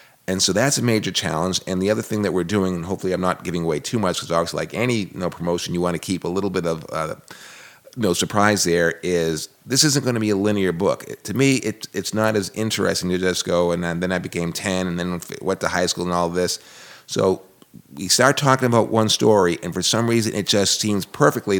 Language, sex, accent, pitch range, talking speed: English, male, American, 90-115 Hz, 240 wpm